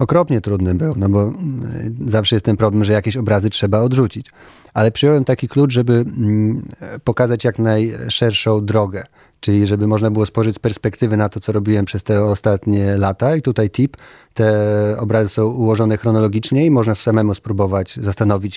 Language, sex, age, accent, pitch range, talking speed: Polish, male, 30-49, native, 105-115 Hz, 165 wpm